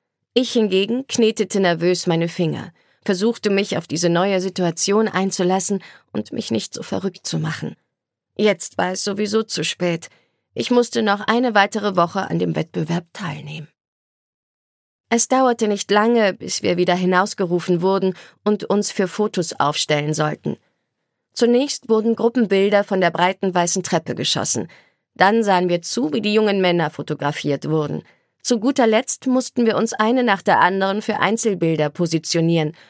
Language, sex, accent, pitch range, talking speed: German, female, German, 170-215 Hz, 150 wpm